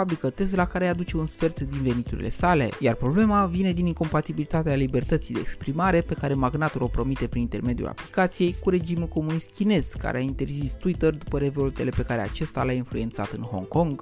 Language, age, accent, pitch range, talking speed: Romanian, 20-39, native, 125-175 Hz, 185 wpm